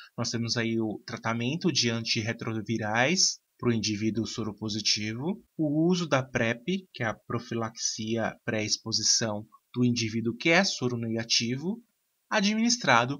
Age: 20-39